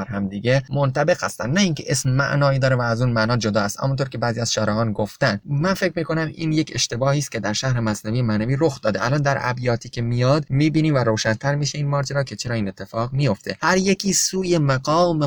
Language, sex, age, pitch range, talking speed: Persian, male, 20-39, 115-155 Hz, 220 wpm